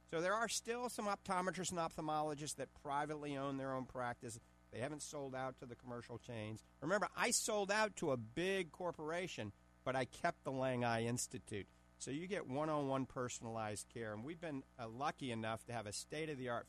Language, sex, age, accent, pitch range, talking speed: English, male, 50-69, American, 115-155 Hz, 190 wpm